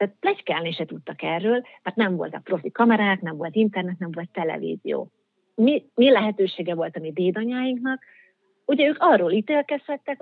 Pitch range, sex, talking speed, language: 180-235 Hz, female, 165 wpm, Hungarian